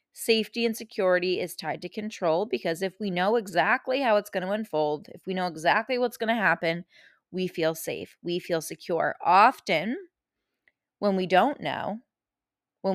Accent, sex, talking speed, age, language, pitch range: American, female, 170 wpm, 20-39, English, 170-225 Hz